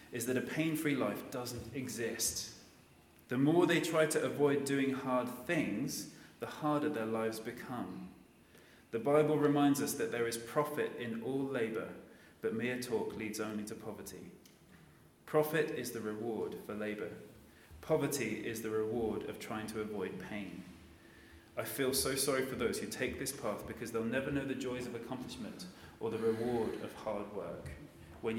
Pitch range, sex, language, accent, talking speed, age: 110-145 Hz, male, English, British, 165 wpm, 30-49